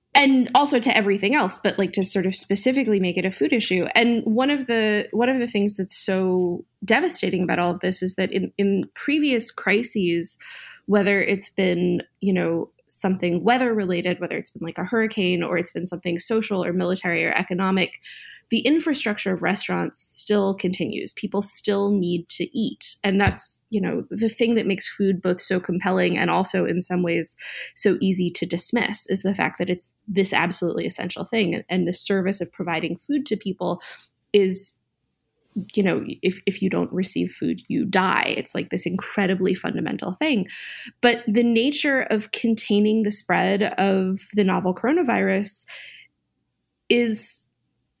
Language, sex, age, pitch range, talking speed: English, female, 20-39, 180-220 Hz, 175 wpm